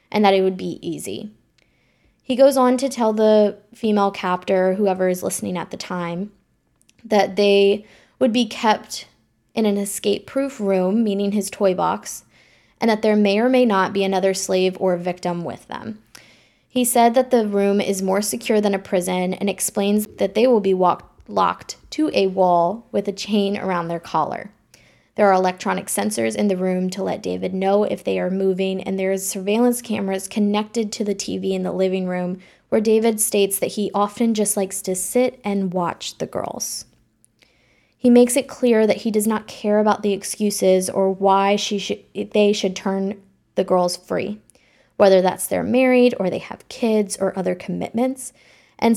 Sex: female